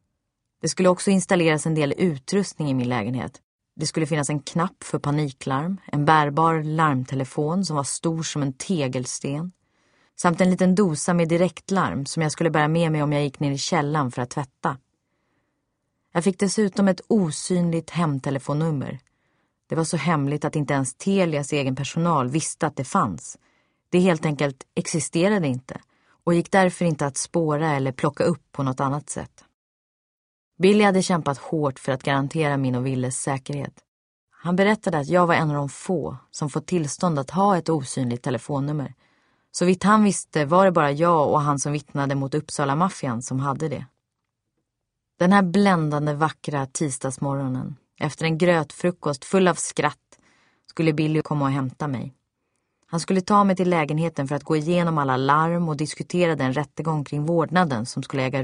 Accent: Swedish